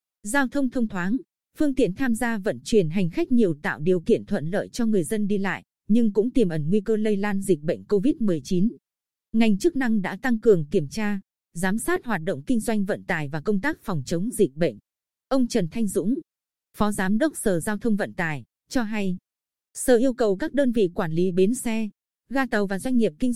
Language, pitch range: Vietnamese, 185-230 Hz